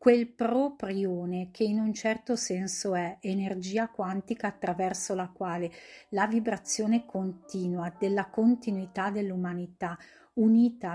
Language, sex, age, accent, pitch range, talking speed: Italian, female, 40-59, native, 180-215 Hz, 110 wpm